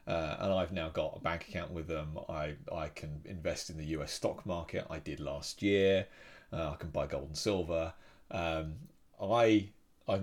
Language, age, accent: English, 30-49, British